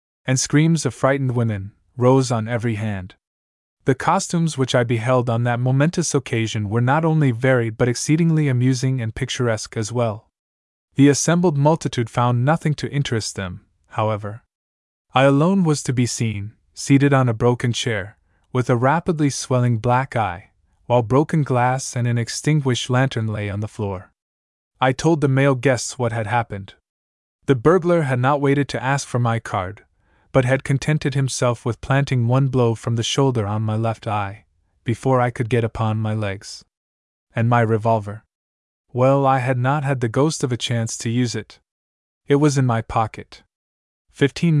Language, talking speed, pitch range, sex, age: English, 170 wpm, 110-135 Hz, male, 20-39